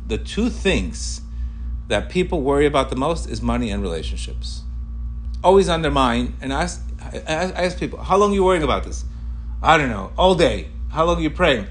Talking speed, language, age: 205 wpm, English, 40-59